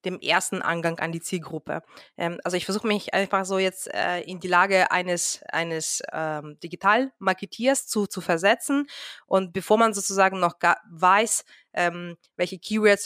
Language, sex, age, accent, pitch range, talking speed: German, female, 20-39, German, 175-215 Hz, 145 wpm